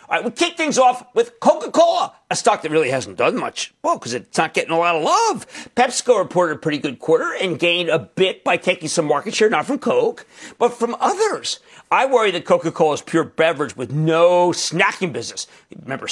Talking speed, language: 210 wpm, English